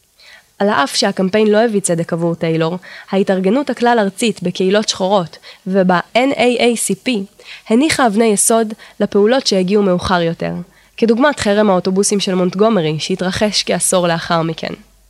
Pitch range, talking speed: 185-230 Hz, 120 wpm